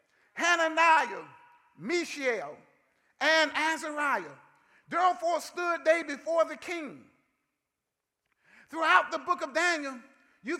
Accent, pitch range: American, 250-330 Hz